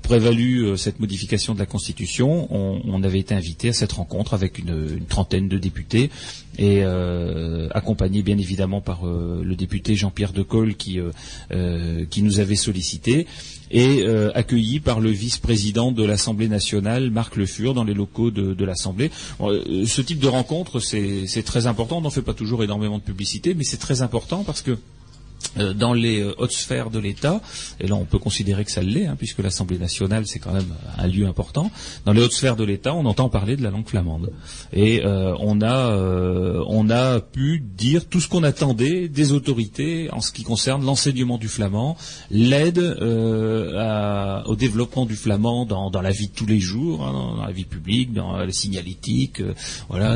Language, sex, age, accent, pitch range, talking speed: French, male, 30-49, French, 95-125 Hz, 200 wpm